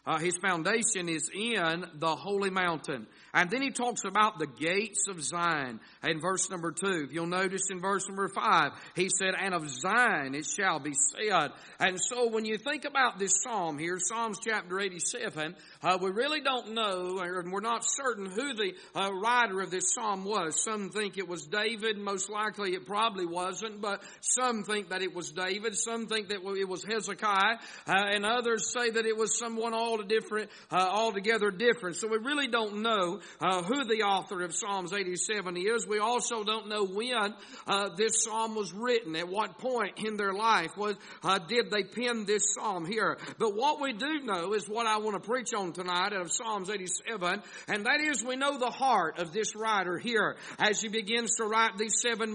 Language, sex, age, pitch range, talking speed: English, male, 50-69, 185-230 Hz, 195 wpm